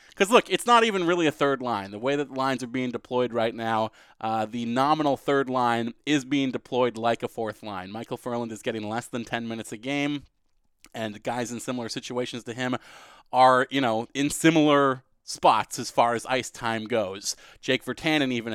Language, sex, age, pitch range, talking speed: English, male, 30-49, 110-135 Hz, 200 wpm